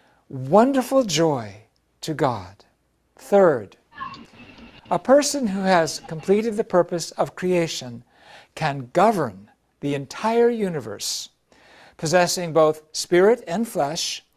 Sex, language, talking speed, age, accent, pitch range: male, English, 100 wpm, 60-79, American, 155-230 Hz